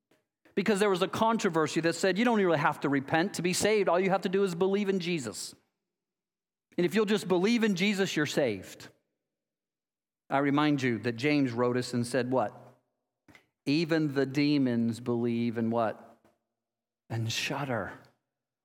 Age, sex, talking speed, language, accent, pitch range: 40-59, male, 165 wpm, English, American, 145-200 Hz